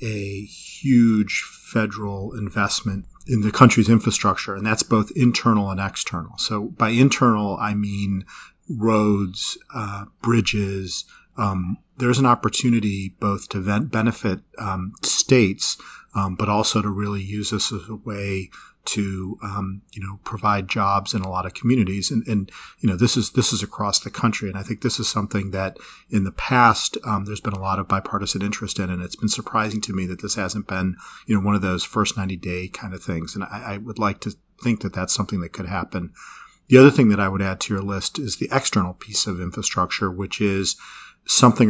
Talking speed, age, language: 195 wpm, 40-59, English